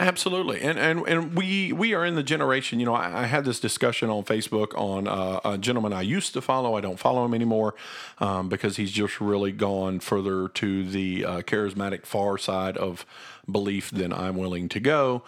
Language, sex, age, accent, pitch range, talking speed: English, male, 50-69, American, 105-140 Hz, 205 wpm